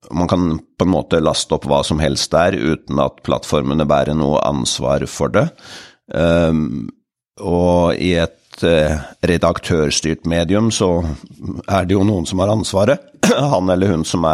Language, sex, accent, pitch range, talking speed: English, male, Swedish, 80-95 Hz, 160 wpm